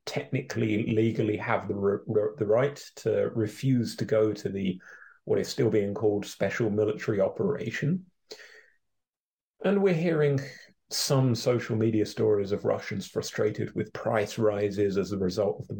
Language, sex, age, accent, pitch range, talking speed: English, male, 30-49, British, 105-140 Hz, 150 wpm